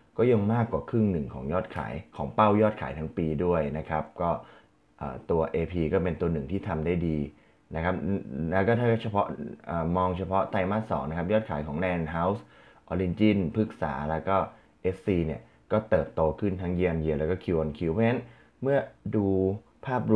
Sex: male